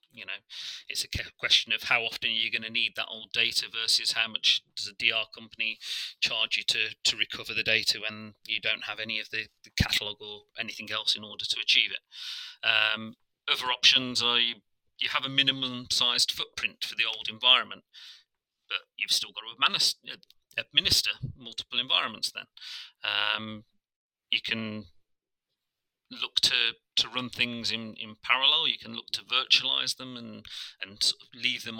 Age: 30-49